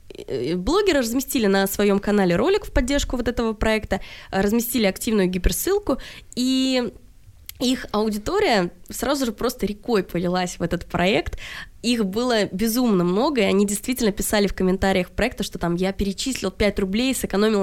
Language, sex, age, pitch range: Russian, female, 20-39, 195-245 Hz